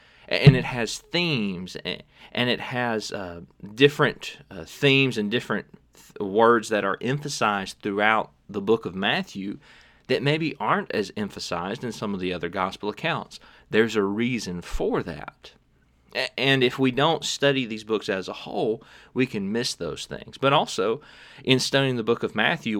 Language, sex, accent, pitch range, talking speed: English, male, American, 100-135 Hz, 165 wpm